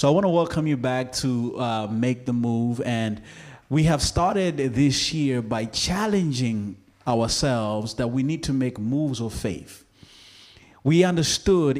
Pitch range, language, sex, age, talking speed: 115-150 Hz, English, male, 30-49, 160 wpm